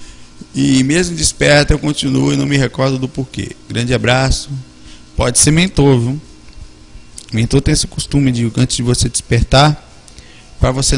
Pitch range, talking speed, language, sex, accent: 115-140 Hz, 155 wpm, Portuguese, male, Brazilian